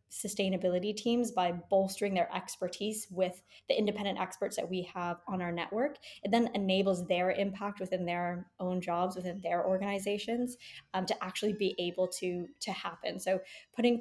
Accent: American